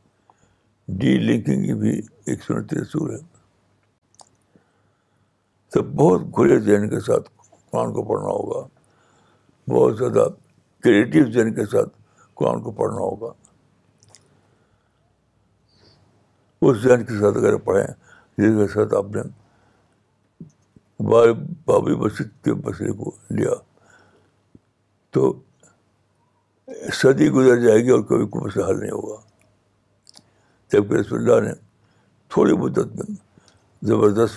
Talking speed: 105 wpm